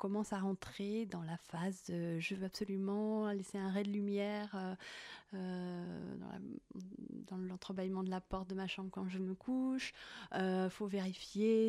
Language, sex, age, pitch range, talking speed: French, female, 30-49, 185-220 Hz, 170 wpm